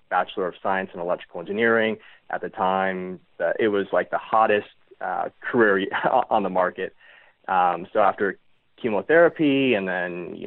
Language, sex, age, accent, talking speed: English, male, 30-49, American, 150 wpm